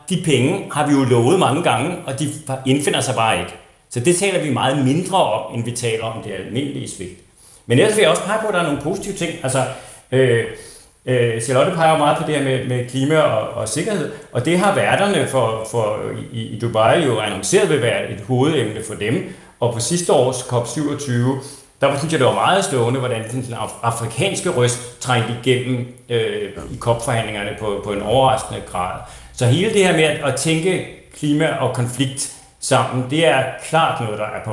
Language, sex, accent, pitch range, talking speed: Danish, male, native, 115-145 Hz, 205 wpm